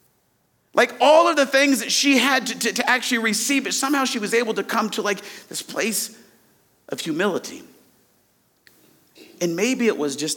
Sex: male